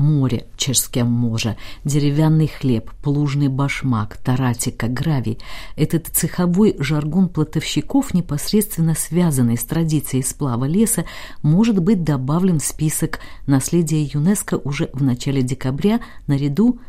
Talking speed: 110 wpm